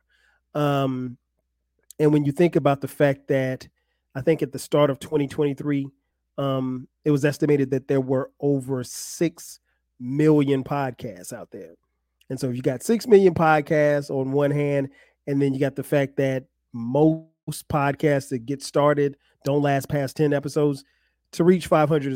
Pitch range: 130-145 Hz